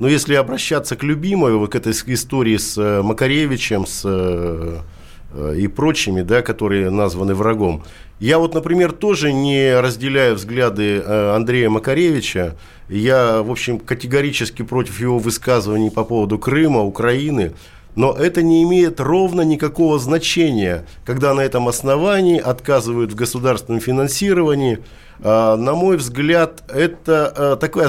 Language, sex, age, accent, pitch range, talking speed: Russian, male, 50-69, native, 110-150 Hz, 125 wpm